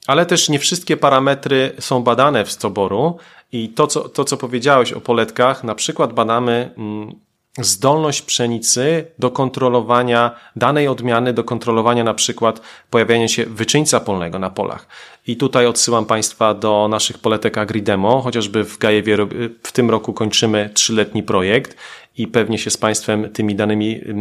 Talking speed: 145 wpm